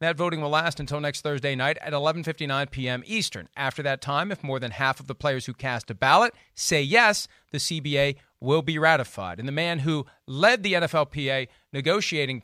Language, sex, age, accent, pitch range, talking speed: English, male, 40-59, American, 135-180 Hz, 200 wpm